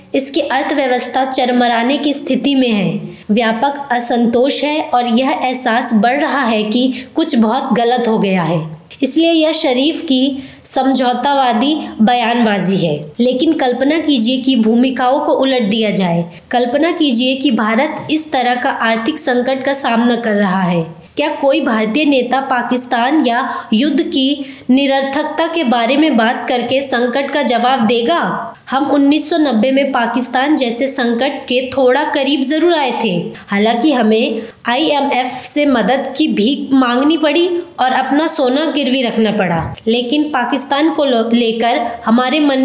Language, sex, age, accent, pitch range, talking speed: English, female, 20-39, Indian, 235-285 Hz, 150 wpm